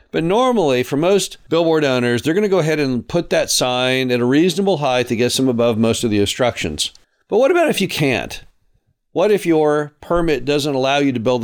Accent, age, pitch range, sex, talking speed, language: American, 50-69, 120-170 Hz, male, 220 wpm, English